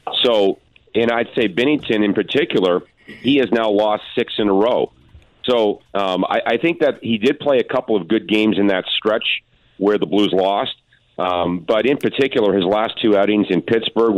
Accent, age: American, 40-59